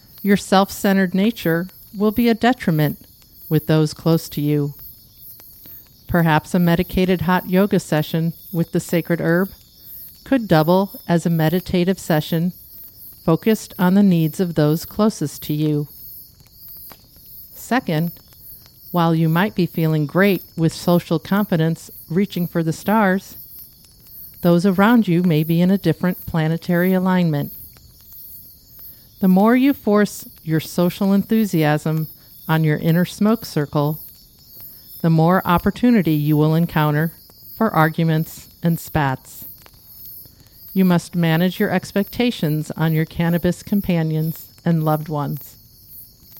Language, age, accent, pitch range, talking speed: English, 50-69, American, 155-185 Hz, 125 wpm